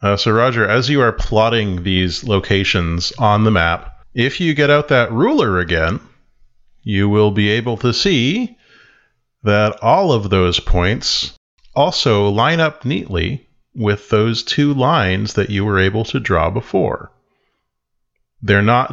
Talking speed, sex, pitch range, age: 150 wpm, male, 90-110 Hz, 40-59